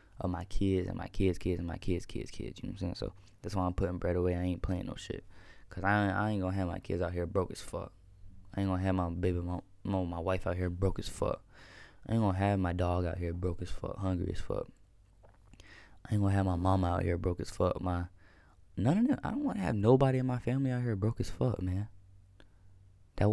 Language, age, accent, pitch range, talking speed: English, 20-39, American, 95-105 Hz, 255 wpm